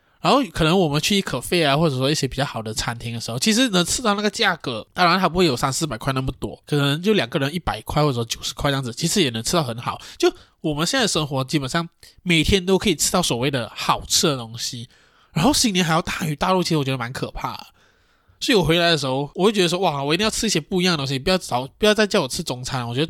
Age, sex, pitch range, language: 20-39, male, 135-200 Hz, Chinese